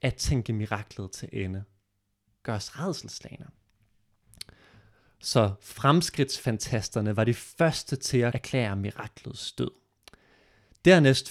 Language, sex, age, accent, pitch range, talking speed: Danish, male, 30-49, native, 100-130 Hz, 100 wpm